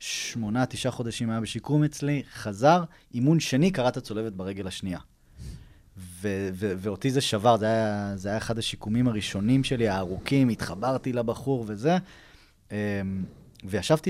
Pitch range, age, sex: 100-135 Hz, 20-39, male